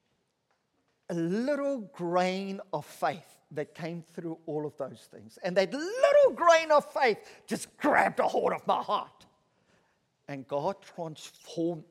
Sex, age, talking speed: male, 50-69, 140 wpm